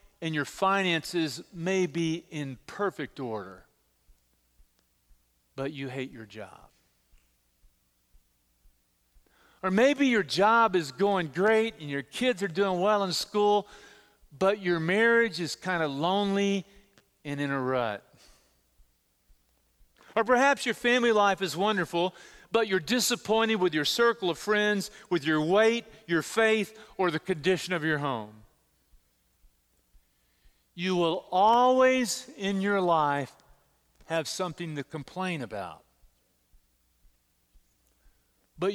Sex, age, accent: male, 40-59, American